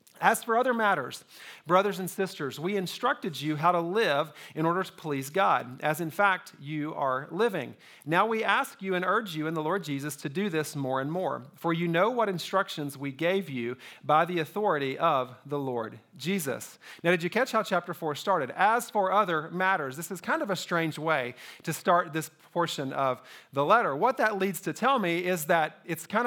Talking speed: 210 wpm